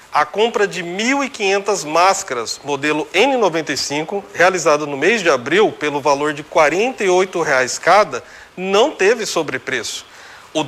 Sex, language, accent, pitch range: male, Portuguese, Brazilian, 165-240 Hz